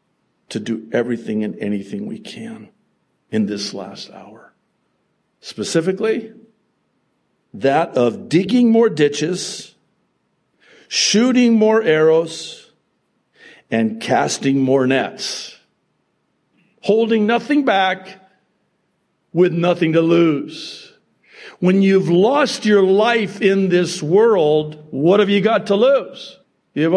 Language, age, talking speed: English, 60-79, 100 wpm